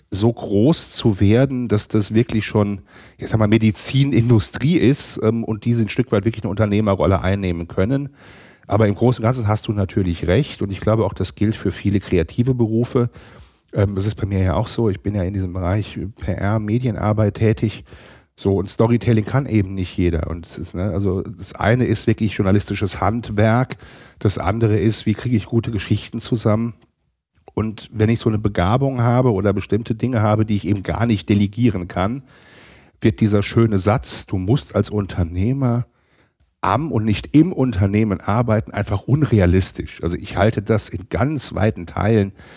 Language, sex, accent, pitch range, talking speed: German, male, German, 100-115 Hz, 180 wpm